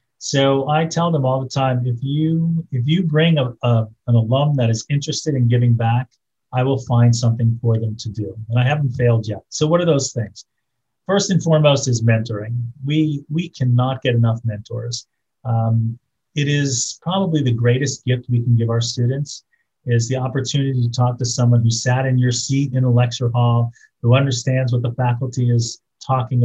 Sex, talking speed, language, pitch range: male, 195 wpm, English, 120-145 Hz